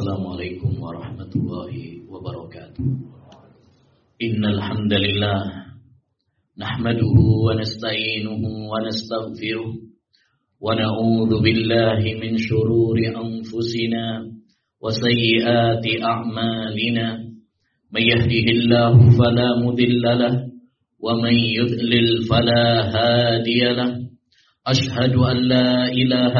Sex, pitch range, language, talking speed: male, 115-130 Hz, Indonesian, 50 wpm